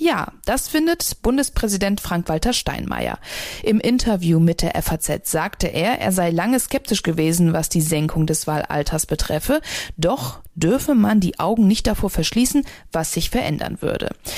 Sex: female